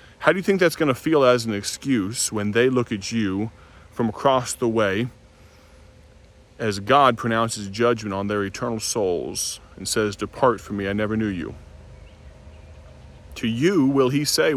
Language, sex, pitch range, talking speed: English, male, 100-130 Hz, 170 wpm